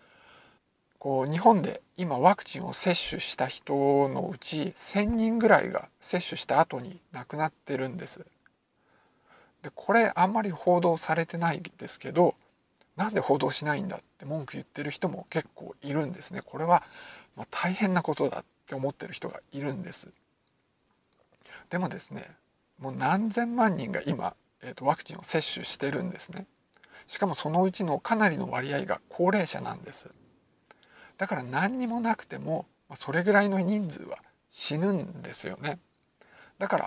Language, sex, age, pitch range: Japanese, male, 50-69, 140-195 Hz